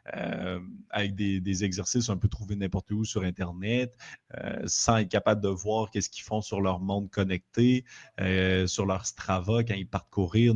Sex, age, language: male, 30-49, French